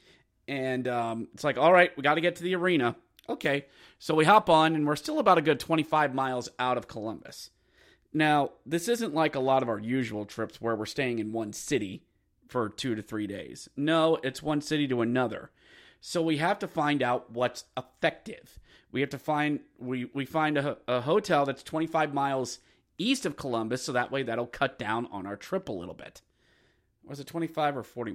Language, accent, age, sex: English, American, 30-49, male